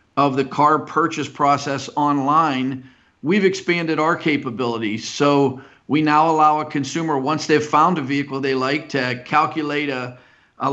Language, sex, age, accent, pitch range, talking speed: English, male, 50-69, American, 135-155 Hz, 150 wpm